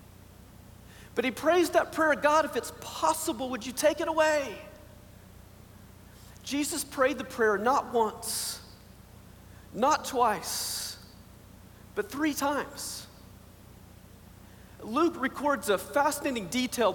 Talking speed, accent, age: 105 wpm, American, 40-59